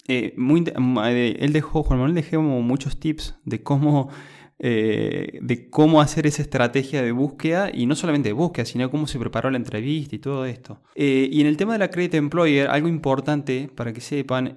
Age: 20-39